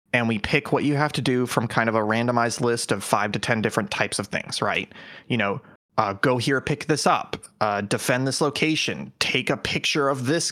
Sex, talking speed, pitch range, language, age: male, 230 wpm, 120-160 Hz, English, 20-39